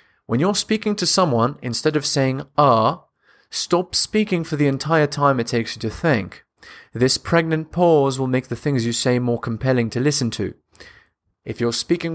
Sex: male